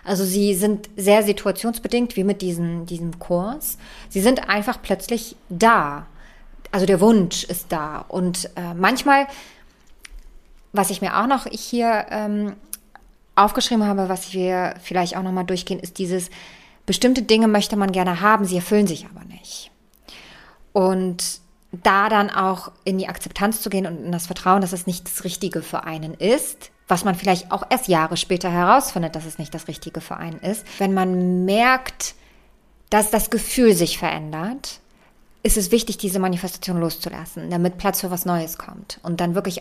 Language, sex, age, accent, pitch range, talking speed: German, female, 20-39, German, 180-210 Hz, 170 wpm